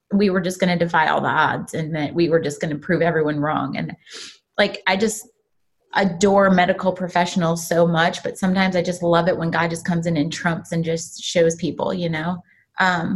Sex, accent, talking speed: female, American, 220 wpm